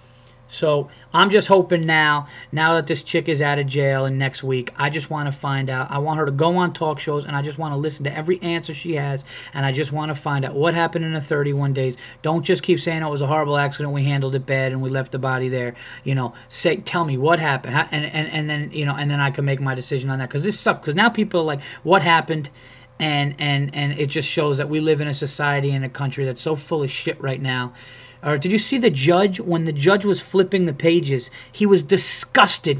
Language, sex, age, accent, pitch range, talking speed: English, male, 20-39, American, 135-165 Hz, 260 wpm